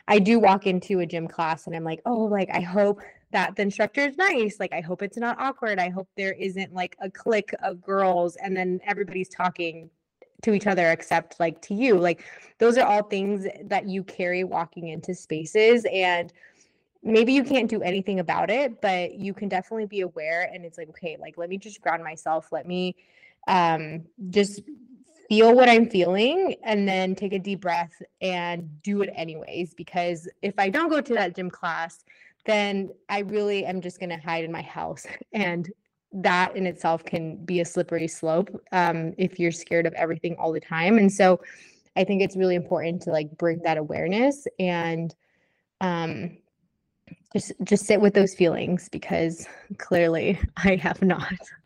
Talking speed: 185 wpm